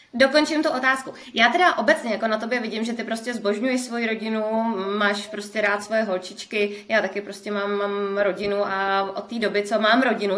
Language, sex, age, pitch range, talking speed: Czech, female, 20-39, 205-255 Hz, 195 wpm